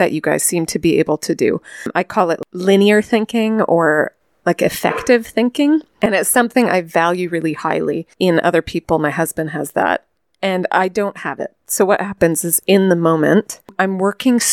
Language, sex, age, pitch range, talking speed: English, female, 30-49, 165-205 Hz, 190 wpm